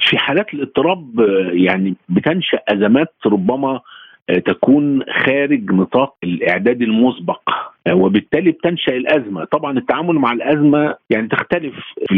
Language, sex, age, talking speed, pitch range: Arabic, male, 50-69, 110 wpm, 115-185 Hz